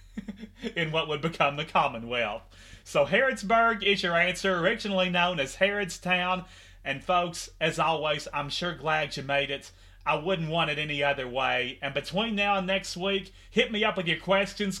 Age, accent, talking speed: 30-49, American, 180 wpm